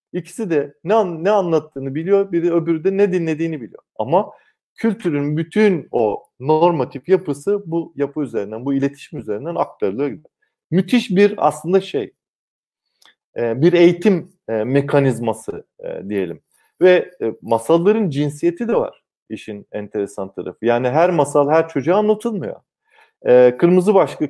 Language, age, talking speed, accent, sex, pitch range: Turkish, 40-59, 125 wpm, native, male, 145-190 Hz